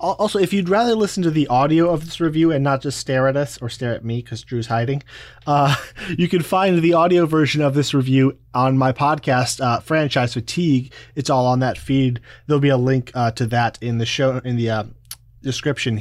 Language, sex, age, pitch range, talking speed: English, male, 20-39, 120-155 Hz, 220 wpm